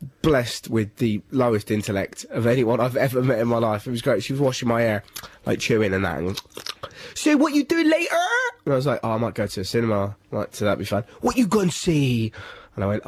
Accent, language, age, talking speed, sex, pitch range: British, English, 20-39, 255 wpm, male, 105-155 Hz